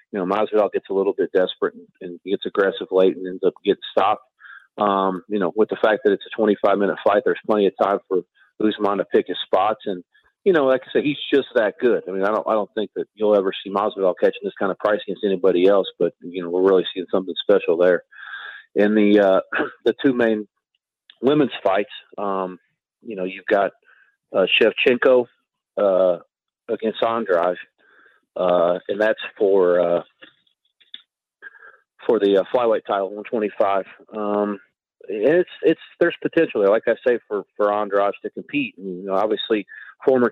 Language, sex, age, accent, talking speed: English, male, 40-59, American, 185 wpm